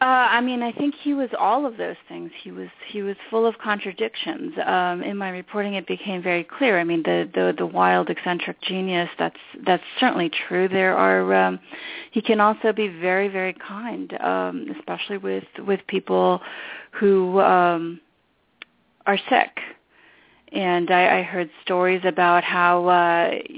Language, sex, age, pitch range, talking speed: English, female, 30-49, 165-225 Hz, 165 wpm